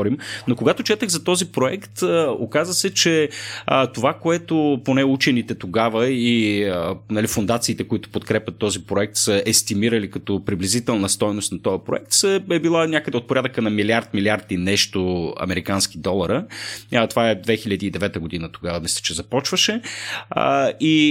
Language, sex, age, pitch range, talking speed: Bulgarian, male, 30-49, 100-130 Hz, 135 wpm